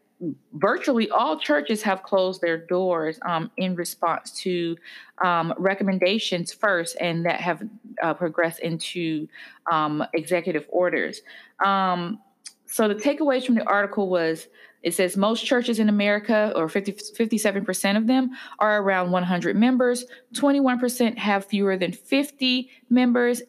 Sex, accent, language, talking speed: female, American, English, 135 wpm